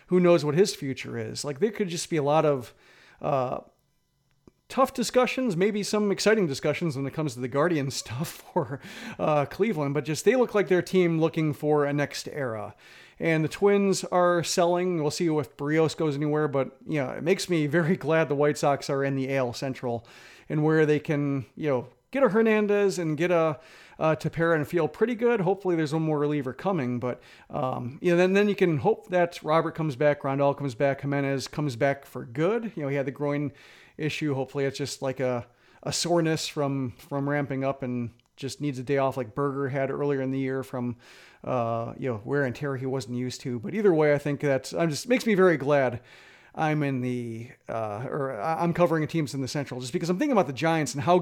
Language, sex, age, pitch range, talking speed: English, male, 40-59, 135-175 Hz, 225 wpm